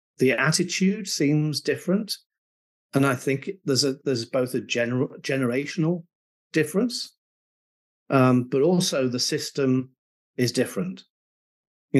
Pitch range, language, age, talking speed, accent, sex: 115-150 Hz, English, 40-59, 115 wpm, British, male